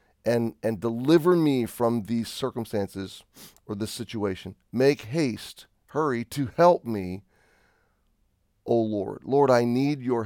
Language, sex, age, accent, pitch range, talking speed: English, male, 40-59, American, 105-140 Hz, 135 wpm